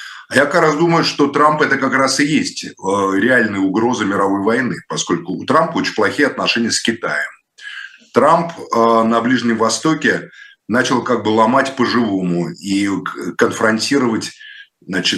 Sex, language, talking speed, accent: male, Russian, 135 wpm, native